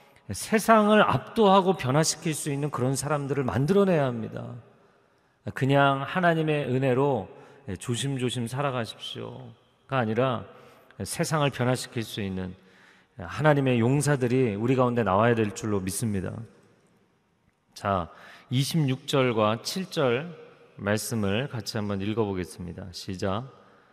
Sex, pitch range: male, 100-135 Hz